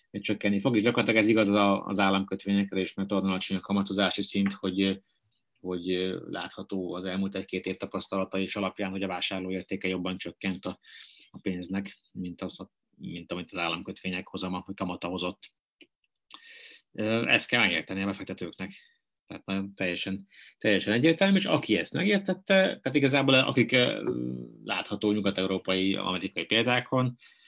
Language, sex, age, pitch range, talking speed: Hungarian, male, 30-49, 95-110 Hz, 140 wpm